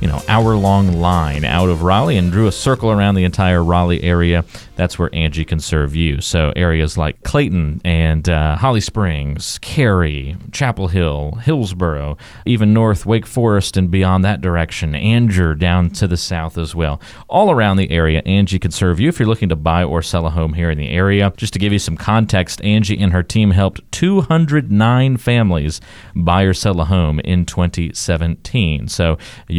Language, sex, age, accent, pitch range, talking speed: English, male, 30-49, American, 85-110 Hz, 185 wpm